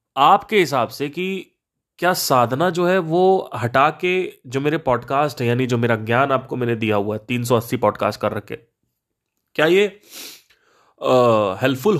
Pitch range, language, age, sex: 115-165 Hz, Hindi, 30-49, male